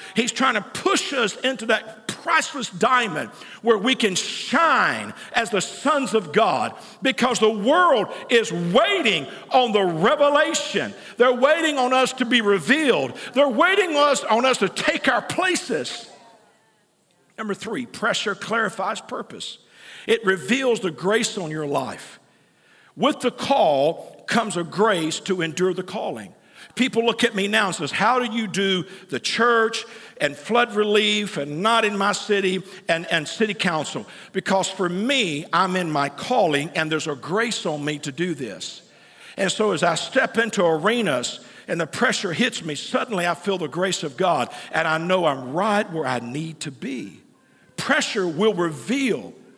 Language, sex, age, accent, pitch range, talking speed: English, male, 50-69, American, 175-240 Hz, 165 wpm